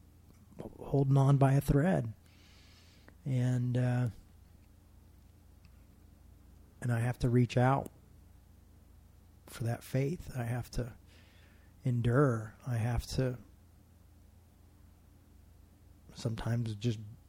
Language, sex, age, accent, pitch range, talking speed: English, male, 40-59, American, 90-120 Hz, 85 wpm